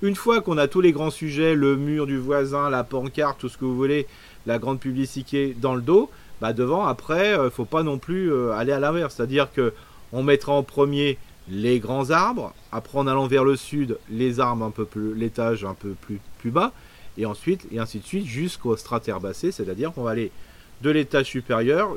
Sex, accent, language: male, French, French